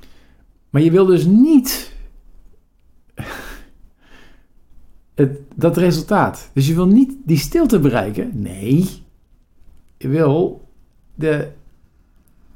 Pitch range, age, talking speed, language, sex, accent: 90-150 Hz, 50-69, 85 wpm, Dutch, male, Dutch